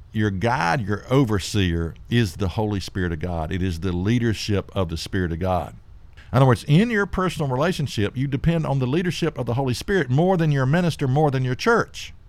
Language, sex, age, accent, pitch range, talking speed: English, male, 50-69, American, 95-140 Hz, 210 wpm